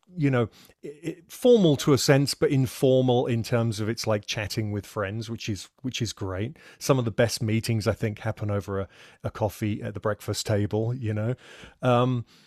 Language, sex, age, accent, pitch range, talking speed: English, male, 30-49, British, 100-135 Hz, 195 wpm